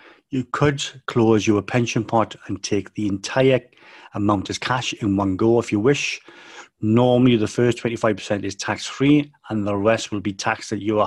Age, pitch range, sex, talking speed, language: 40-59, 105-120 Hz, male, 180 wpm, English